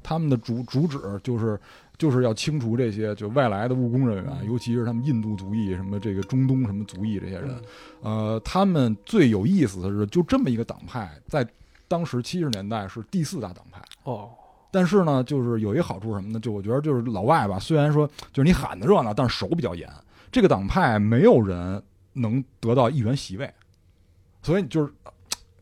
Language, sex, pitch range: Chinese, male, 105-145 Hz